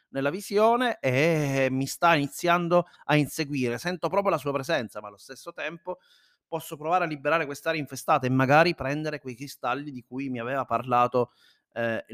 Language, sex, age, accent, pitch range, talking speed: Italian, male, 30-49, native, 120-155 Hz, 170 wpm